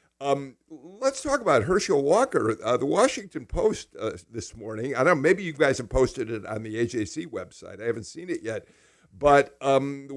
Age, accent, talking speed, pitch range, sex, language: 50-69, American, 200 wpm, 115-165 Hz, male, English